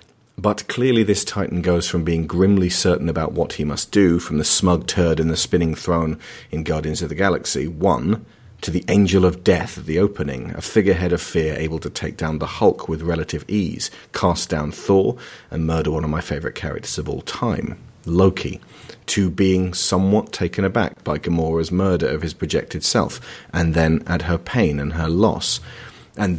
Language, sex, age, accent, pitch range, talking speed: English, male, 40-59, British, 80-95 Hz, 190 wpm